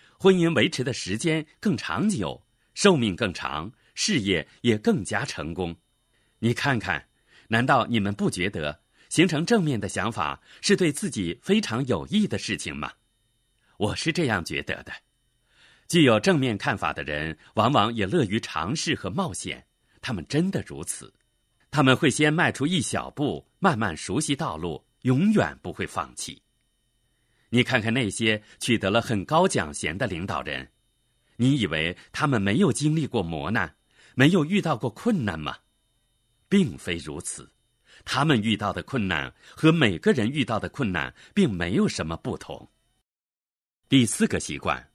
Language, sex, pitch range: Chinese, male, 100-155 Hz